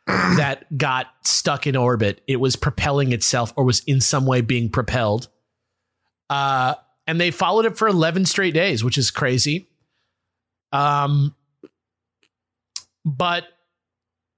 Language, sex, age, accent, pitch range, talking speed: English, male, 30-49, American, 125-175 Hz, 125 wpm